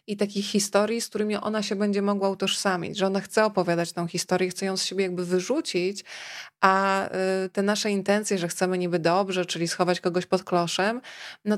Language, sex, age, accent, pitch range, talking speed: Polish, female, 20-39, native, 185-210 Hz, 185 wpm